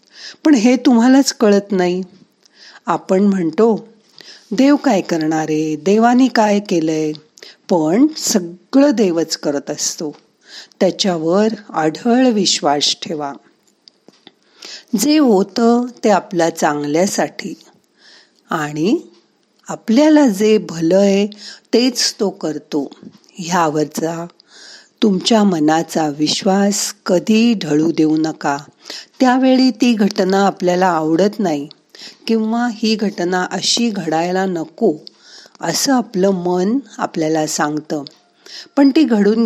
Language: Marathi